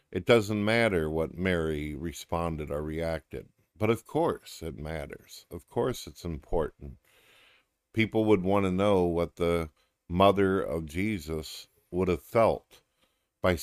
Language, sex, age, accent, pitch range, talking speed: English, male, 50-69, American, 80-100 Hz, 135 wpm